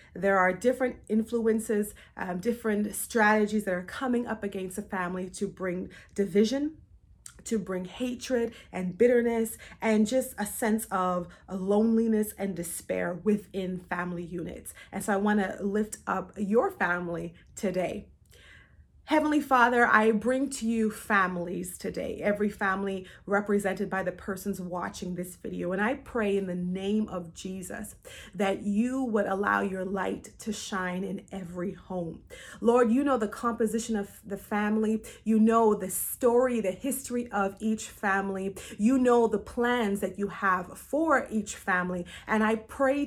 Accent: American